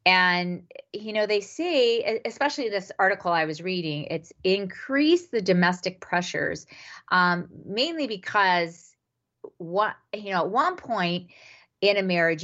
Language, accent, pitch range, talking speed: English, American, 155-195 Hz, 135 wpm